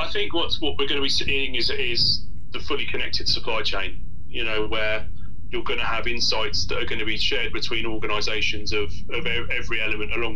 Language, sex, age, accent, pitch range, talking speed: English, male, 30-49, British, 95-115 Hz, 210 wpm